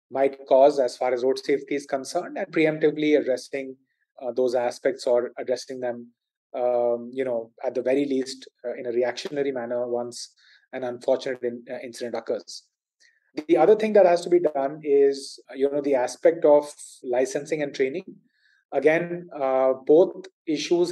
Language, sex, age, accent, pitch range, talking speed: English, male, 30-49, Indian, 130-170 Hz, 160 wpm